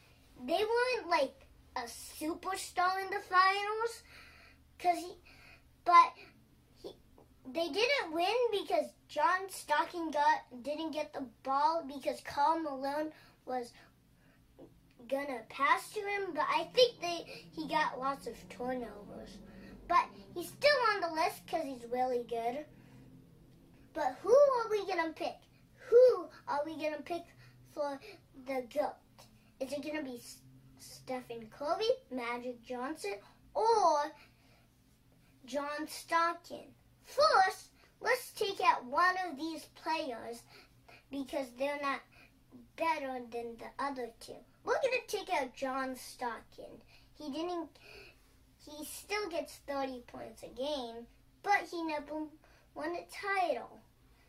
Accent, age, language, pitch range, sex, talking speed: American, 20-39, English, 255-360 Hz, male, 125 wpm